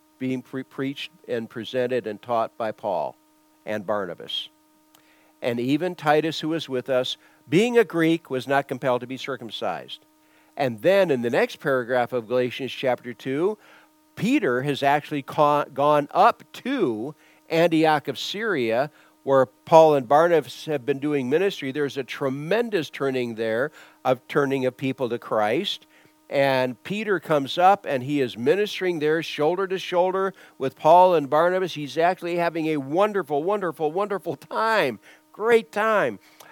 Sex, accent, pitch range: male, American, 130-205 Hz